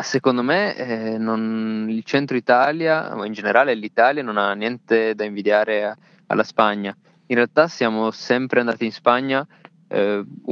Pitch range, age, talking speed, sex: 105-115 Hz, 20-39, 150 wpm, male